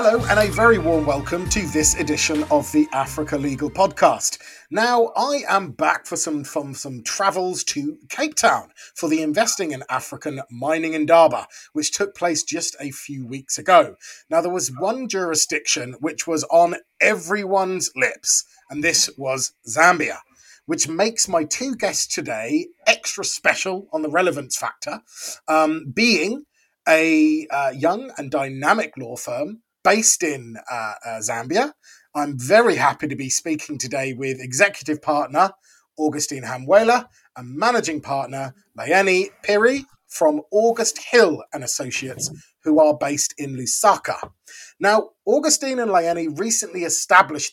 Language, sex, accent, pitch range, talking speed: English, male, British, 145-205 Hz, 145 wpm